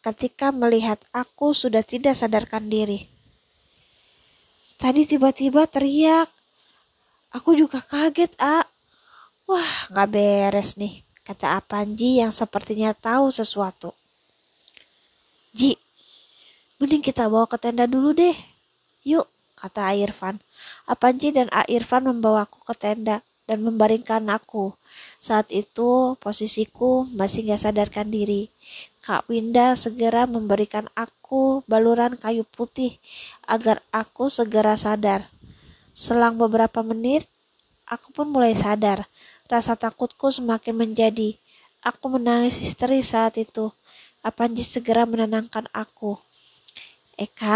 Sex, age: female, 20-39